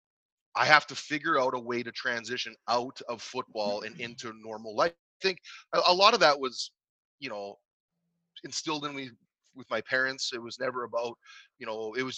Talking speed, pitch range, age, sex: 190 wpm, 115-145 Hz, 30-49, male